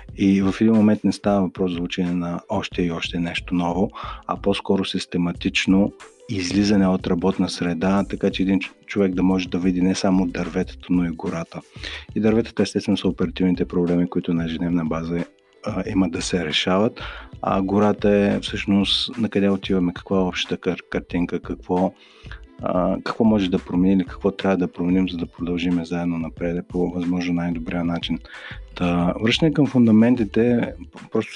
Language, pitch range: Bulgarian, 85-100 Hz